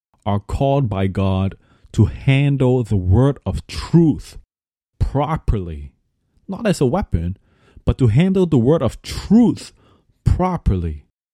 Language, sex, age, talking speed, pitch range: English, male, 30-49, 120 wpm, 100-125 Hz